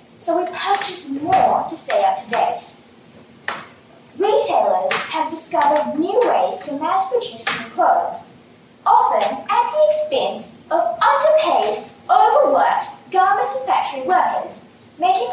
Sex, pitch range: female, 285-395 Hz